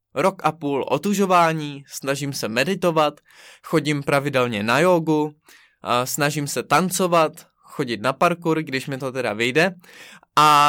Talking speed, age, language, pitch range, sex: 130 wpm, 20-39, Czech, 135-175 Hz, male